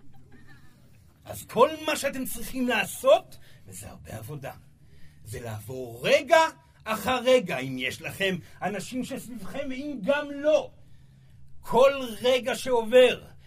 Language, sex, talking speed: Hebrew, male, 110 wpm